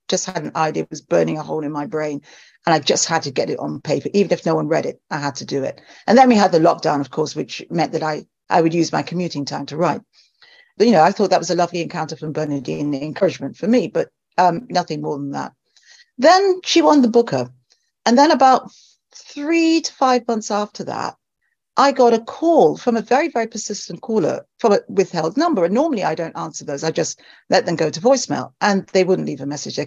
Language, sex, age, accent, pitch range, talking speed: English, female, 50-69, British, 160-240 Hz, 245 wpm